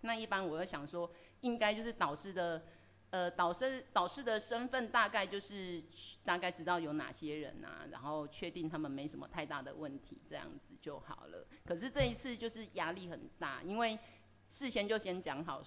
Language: Chinese